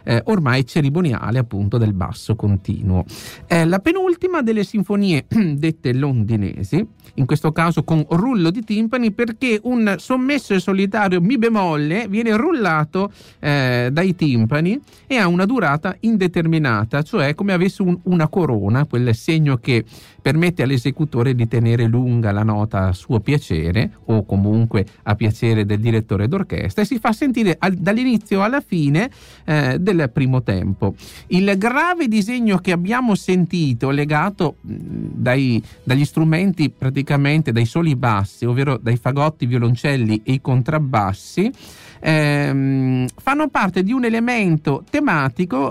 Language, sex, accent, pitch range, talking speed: Italian, male, native, 120-195 Hz, 135 wpm